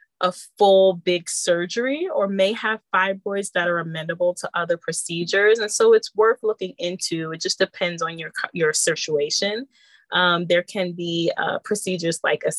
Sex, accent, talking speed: female, American, 160 wpm